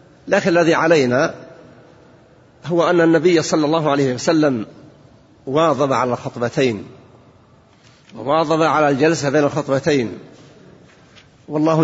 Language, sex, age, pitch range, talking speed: Arabic, male, 50-69, 135-165 Hz, 95 wpm